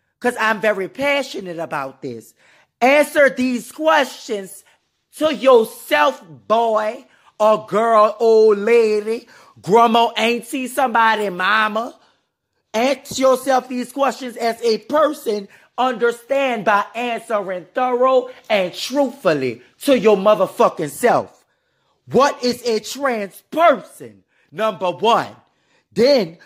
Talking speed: 100 wpm